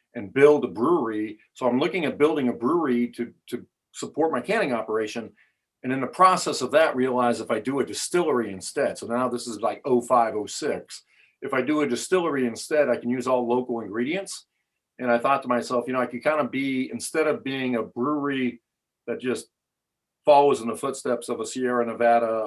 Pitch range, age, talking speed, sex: 115-135 Hz, 40-59, 205 wpm, male